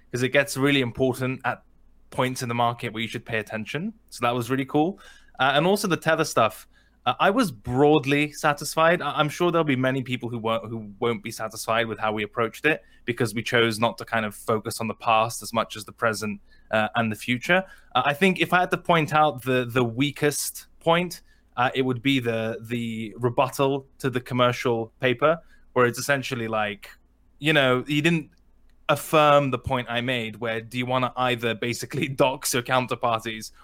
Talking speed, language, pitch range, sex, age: 205 wpm, English, 115-145 Hz, male, 20-39